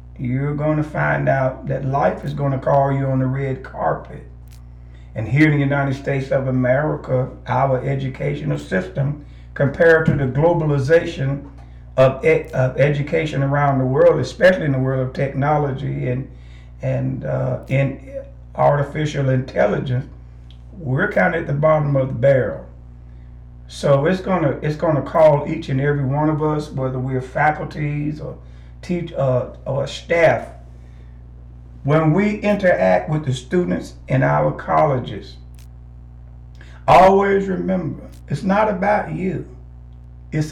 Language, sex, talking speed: English, male, 140 wpm